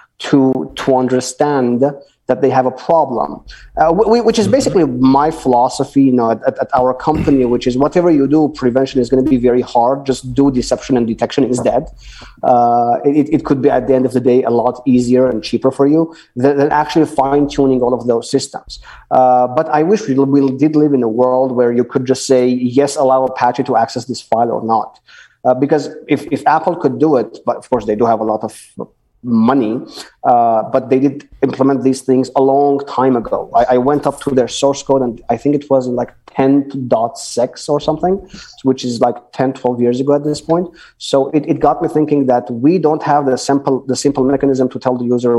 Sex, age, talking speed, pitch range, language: male, 30-49, 215 wpm, 125-145 Hz, English